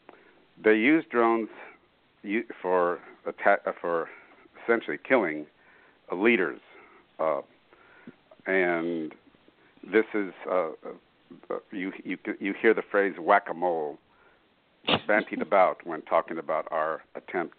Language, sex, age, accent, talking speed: English, male, 60-79, American, 95 wpm